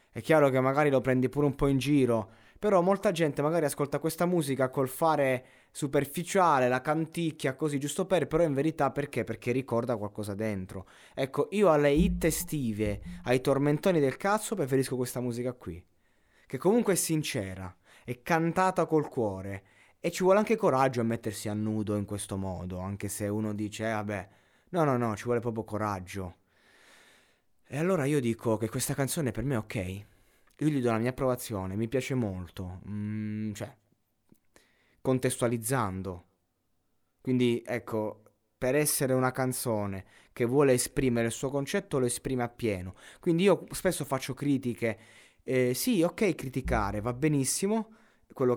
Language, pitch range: Italian, 110-150 Hz